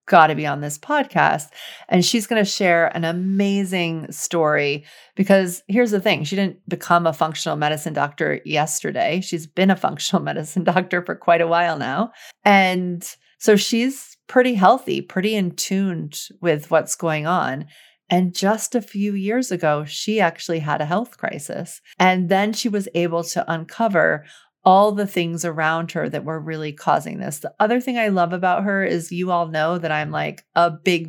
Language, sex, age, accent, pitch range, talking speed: English, female, 40-59, American, 160-205 Hz, 180 wpm